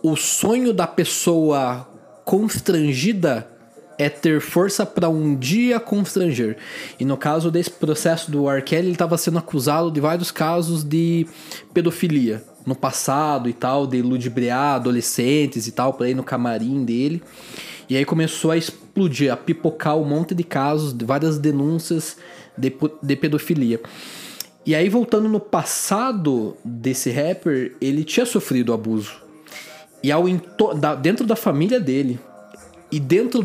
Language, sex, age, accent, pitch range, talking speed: Portuguese, male, 20-39, Brazilian, 135-175 Hz, 140 wpm